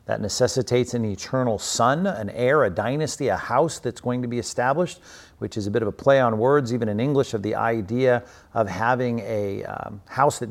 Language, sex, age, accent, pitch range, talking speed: English, male, 50-69, American, 105-130 Hz, 210 wpm